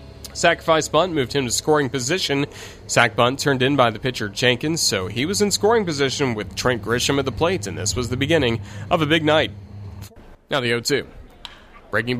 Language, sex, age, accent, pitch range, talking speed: English, male, 30-49, American, 120-160 Hz, 195 wpm